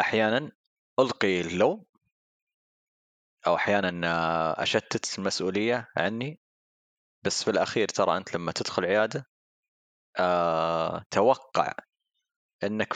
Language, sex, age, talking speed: Arabic, male, 20-39, 85 wpm